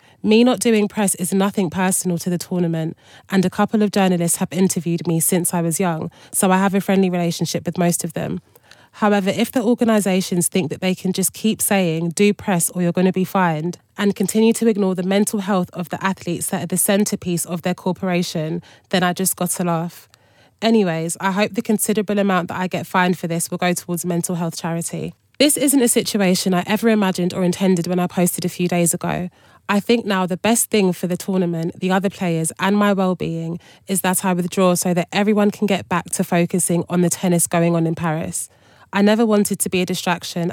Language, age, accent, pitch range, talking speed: English, 20-39, British, 170-195 Hz, 220 wpm